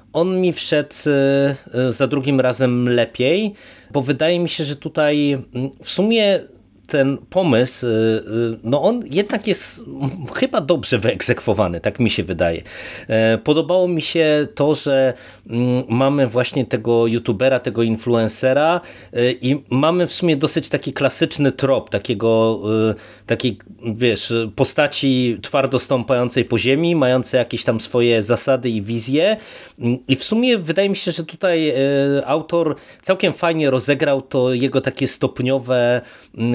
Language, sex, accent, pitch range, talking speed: Polish, male, native, 115-145 Hz, 130 wpm